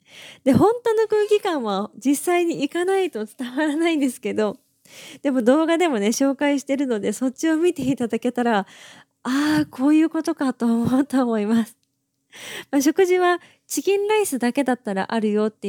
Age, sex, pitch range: 20-39, female, 215-285 Hz